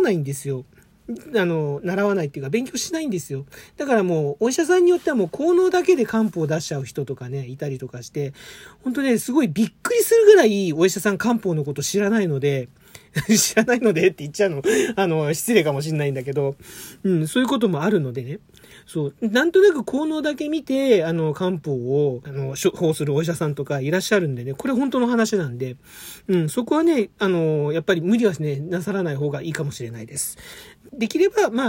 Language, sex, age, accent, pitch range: Japanese, male, 40-59, native, 145-230 Hz